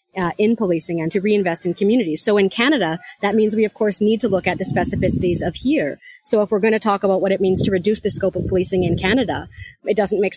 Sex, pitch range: female, 170-205 Hz